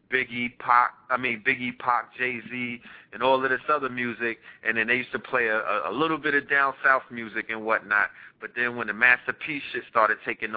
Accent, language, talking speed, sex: American, English, 215 wpm, male